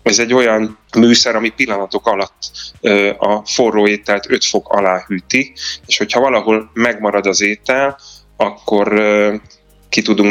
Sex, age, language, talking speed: male, 20-39, Hungarian, 135 wpm